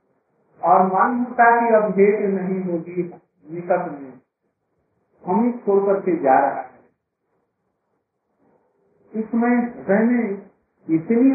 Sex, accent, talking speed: male, native, 90 wpm